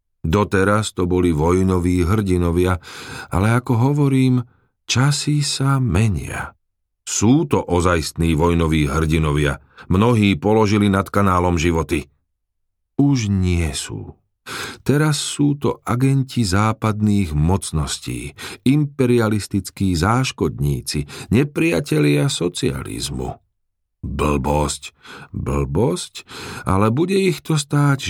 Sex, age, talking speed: male, 50-69, 90 wpm